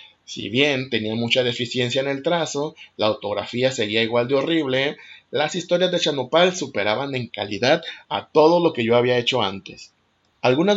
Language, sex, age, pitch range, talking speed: Spanish, male, 30-49, 115-150 Hz, 165 wpm